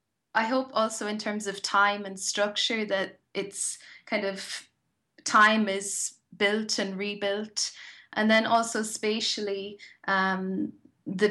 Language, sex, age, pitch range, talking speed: English, female, 10-29, 185-215 Hz, 125 wpm